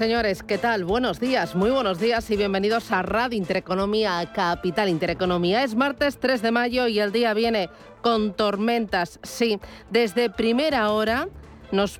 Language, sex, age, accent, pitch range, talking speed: Spanish, female, 40-59, Spanish, 200-240 Hz, 155 wpm